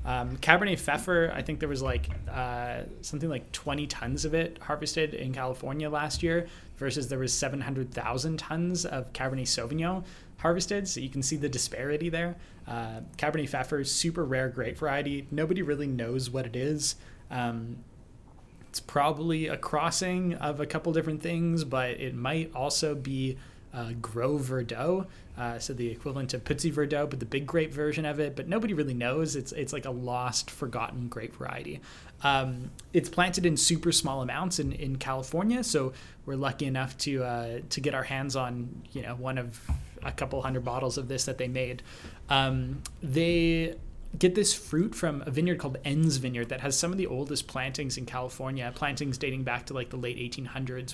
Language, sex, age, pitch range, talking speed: English, male, 20-39, 125-150 Hz, 185 wpm